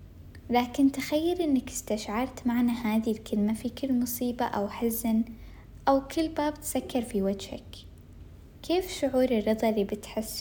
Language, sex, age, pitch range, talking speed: Arabic, female, 10-29, 220-275 Hz, 135 wpm